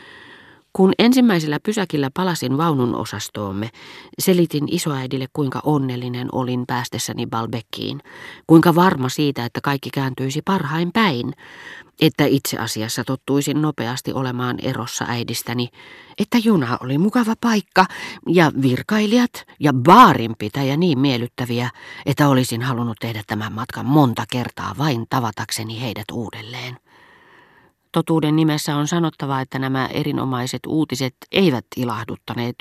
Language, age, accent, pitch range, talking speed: Finnish, 40-59, native, 120-155 Hz, 115 wpm